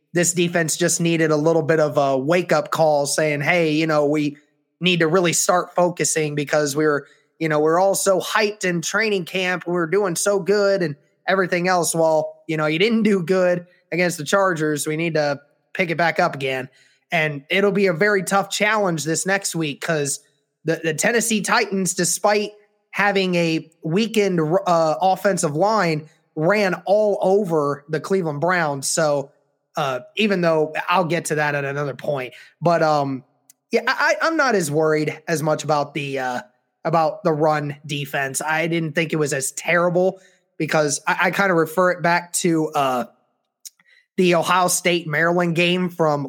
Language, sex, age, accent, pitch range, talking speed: English, male, 20-39, American, 155-190 Hz, 175 wpm